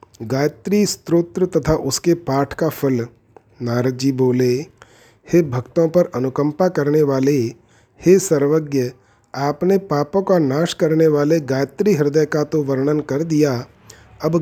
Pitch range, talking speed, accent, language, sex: 130-160 Hz, 135 wpm, native, Hindi, male